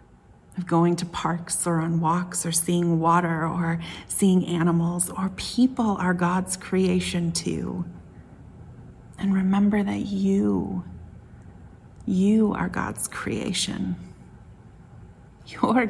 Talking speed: 105 wpm